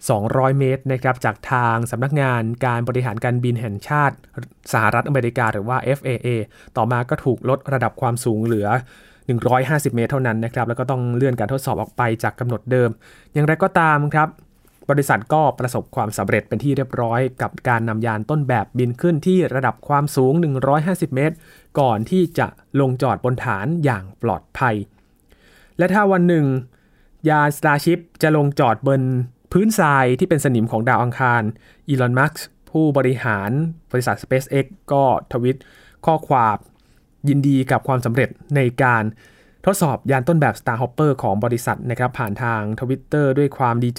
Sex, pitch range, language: male, 120-145 Hz, Thai